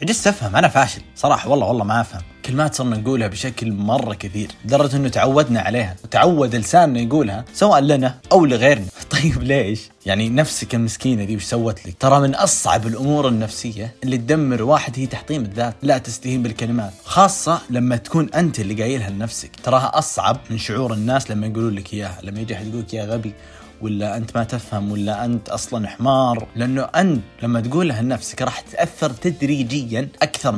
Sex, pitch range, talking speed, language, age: male, 110-135 Hz, 170 wpm, Arabic, 30-49